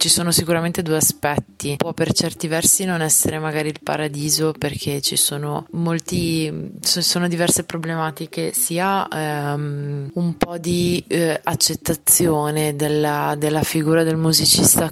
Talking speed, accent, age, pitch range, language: 135 wpm, native, 20-39, 150-160 Hz, Italian